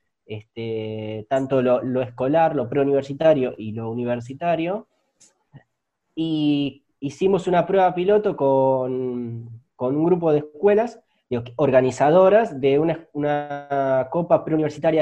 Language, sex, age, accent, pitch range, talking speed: Spanish, male, 20-39, Argentinian, 120-155 Hz, 110 wpm